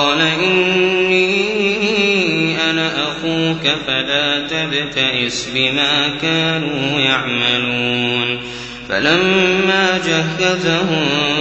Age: 20-39